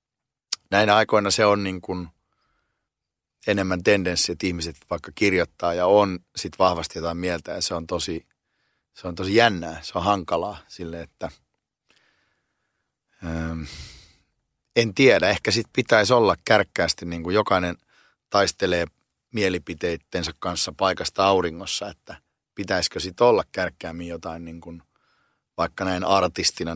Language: Finnish